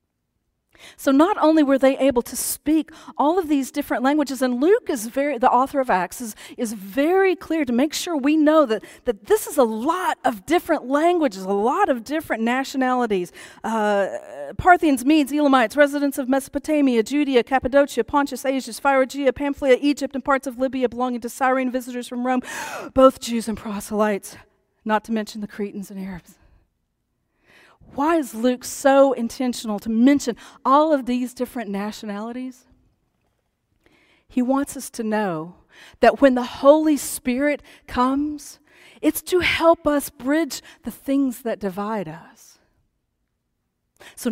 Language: English